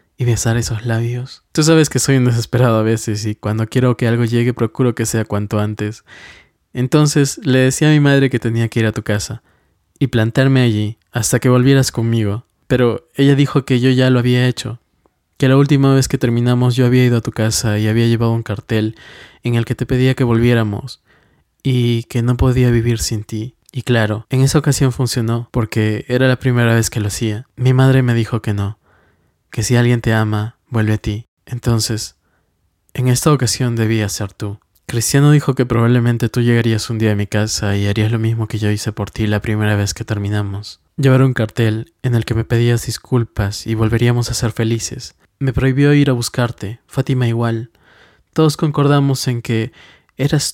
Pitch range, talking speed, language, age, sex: 110-130 Hz, 200 wpm, Spanish, 20-39, male